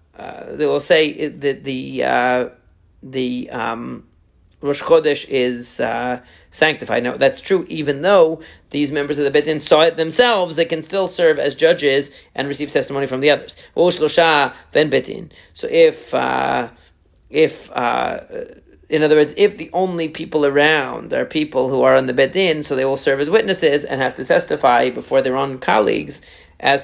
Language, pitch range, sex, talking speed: English, 140-175 Hz, male, 170 wpm